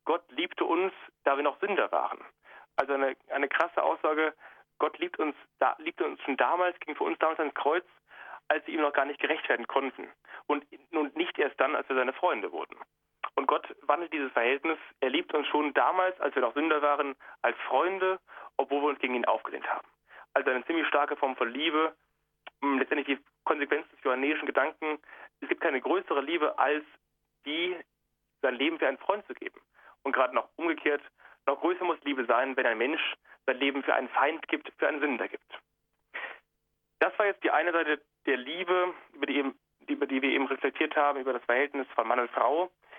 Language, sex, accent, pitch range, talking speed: German, male, German, 135-165 Hz, 195 wpm